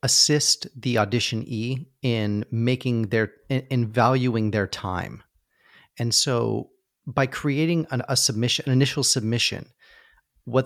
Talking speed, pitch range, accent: 120 wpm, 110-135 Hz, American